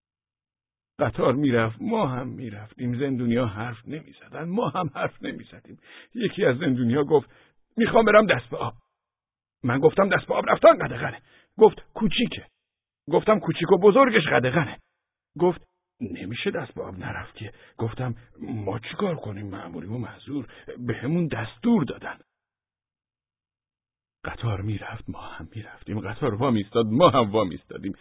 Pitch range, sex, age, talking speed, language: 110-150 Hz, male, 50-69, 145 wpm, Persian